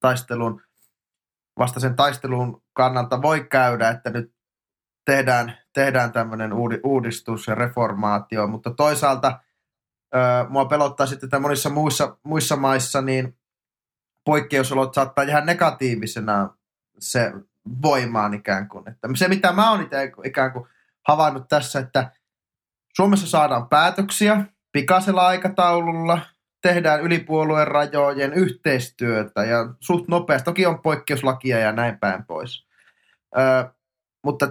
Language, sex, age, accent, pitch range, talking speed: Finnish, male, 20-39, native, 120-150 Hz, 115 wpm